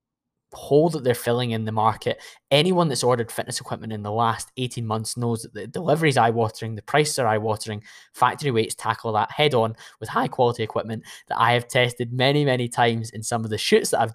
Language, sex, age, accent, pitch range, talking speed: English, male, 10-29, British, 115-135 Hz, 210 wpm